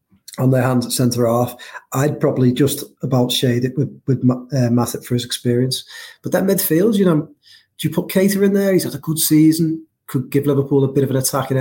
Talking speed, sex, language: 215 wpm, male, English